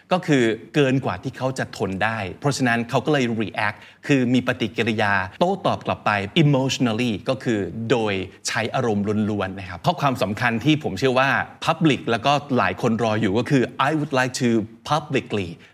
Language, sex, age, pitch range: Thai, male, 20-39, 110-140 Hz